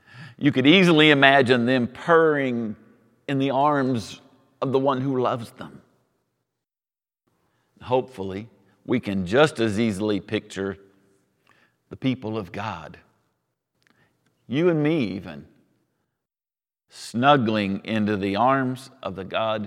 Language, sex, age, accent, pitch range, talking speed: English, male, 50-69, American, 115-155 Hz, 115 wpm